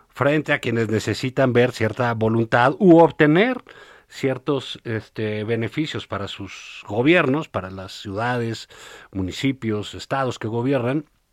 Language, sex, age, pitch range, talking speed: Spanish, male, 50-69, 110-145 Hz, 115 wpm